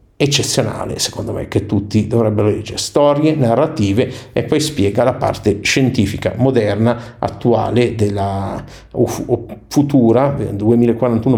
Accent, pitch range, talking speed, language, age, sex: native, 105-130 Hz, 115 wpm, Italian, 50-69, male